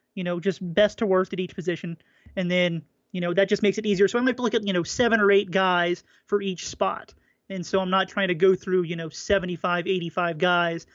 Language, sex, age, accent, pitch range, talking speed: English, male, 30-49, American, 180-215 Hz, 245 wpm